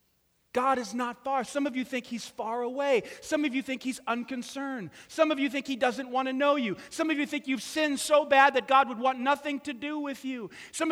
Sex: male